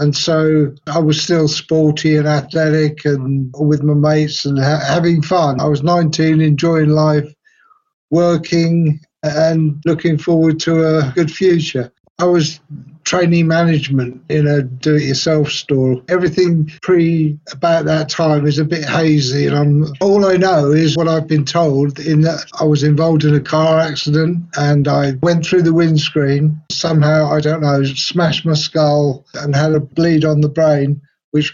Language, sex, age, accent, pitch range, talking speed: English, male, 60-79, British, 150-165 Hz, 160 wpm